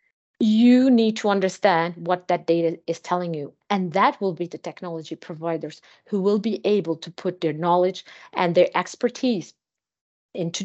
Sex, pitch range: female, 170-215 Hz